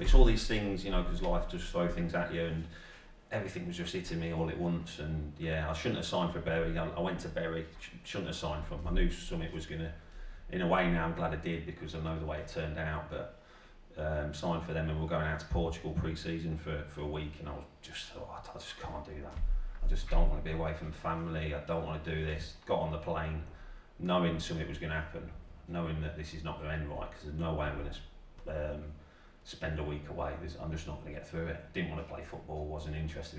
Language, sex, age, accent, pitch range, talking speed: English, male, 30-49, British, 75-85 Hz, 275 wpm